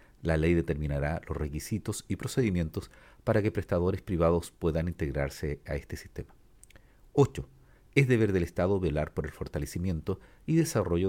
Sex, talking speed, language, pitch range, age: male, 145 wpm, Spanish, 75-105 Hz, 50-69